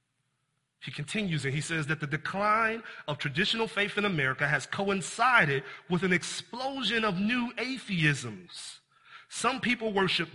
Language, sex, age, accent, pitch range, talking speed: English, male, 30-49, American, 155-215 Hz, 140 wpm